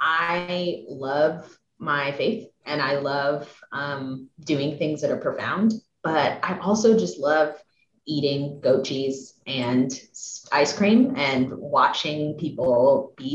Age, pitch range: 30-49, 150-210 Hz